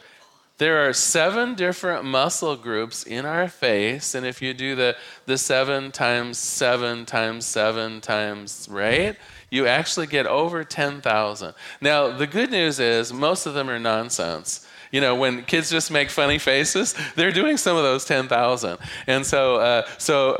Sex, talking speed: male, 160 wpm